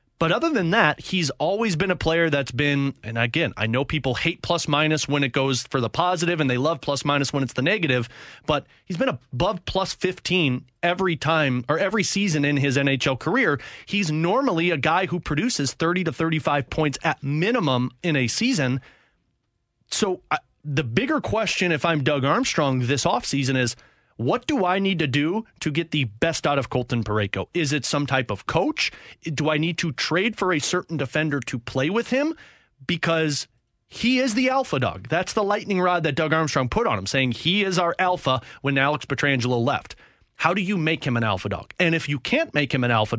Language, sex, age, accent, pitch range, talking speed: English, male, 30-49, American, 130-170 Hz, 210 wpm